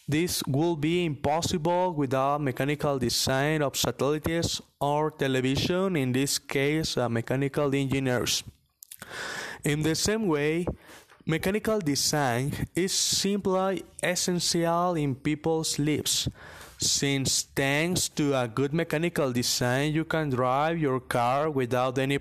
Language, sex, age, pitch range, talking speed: English, male, 20-39, 140-175 Hz, 115 wpm